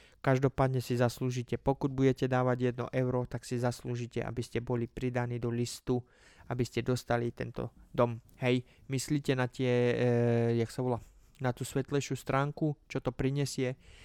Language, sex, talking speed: Slovak, male, 160 wpm